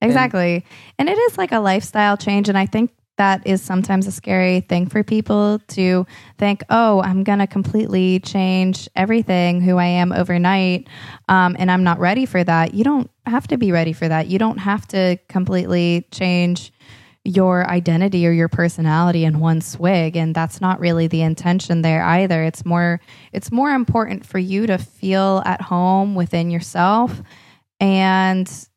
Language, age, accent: English, 20-39, American